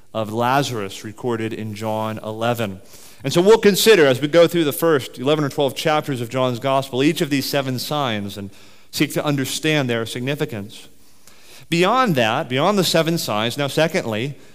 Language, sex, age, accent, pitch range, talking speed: English, male, 40-59, American, 120-155 Hz, 175 wpm